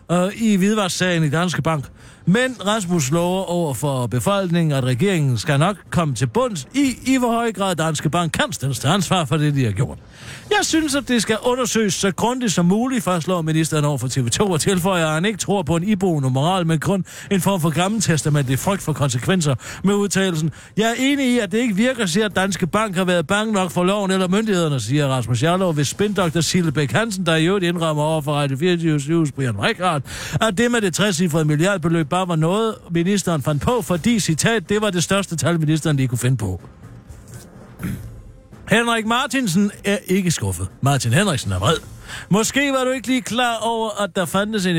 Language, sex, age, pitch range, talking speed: Danish, male, 60-79, 150-200 Hz, 205 wpm